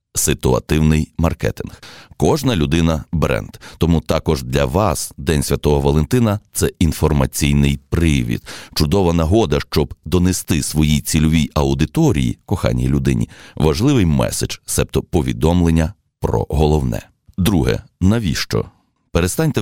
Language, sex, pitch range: Ukrainian, male, 75-90 Hz